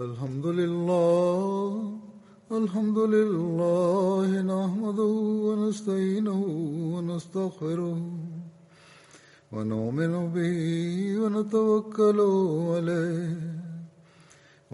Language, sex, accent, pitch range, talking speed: Turkish, male, Indian, 165-210 Hz, 55 wpm